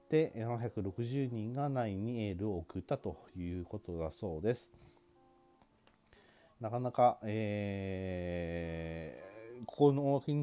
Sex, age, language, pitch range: male, 40-59, Japanese, 90-125 Hz